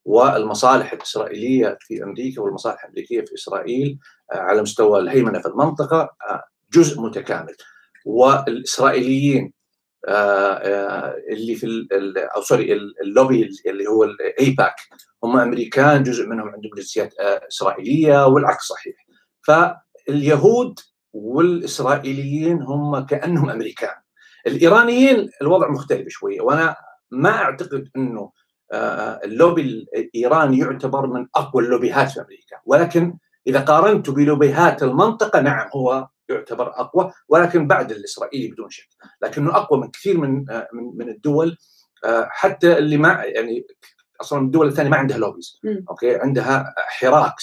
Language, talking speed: Arabic, 110 wpm